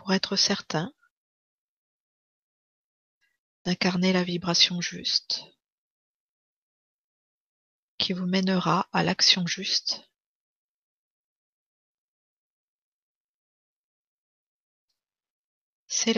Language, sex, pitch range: French, female, 180-200 Hz